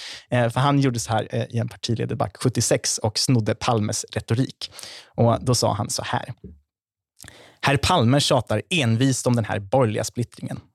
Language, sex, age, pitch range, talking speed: Swedish, male, 20-39, 115-140 Hz, 155 wpm